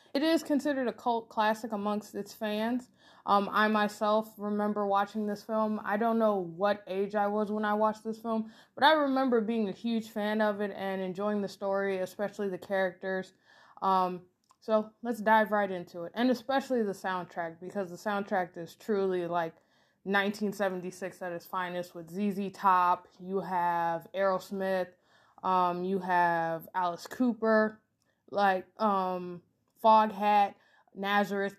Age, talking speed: 20-39, 155 wpm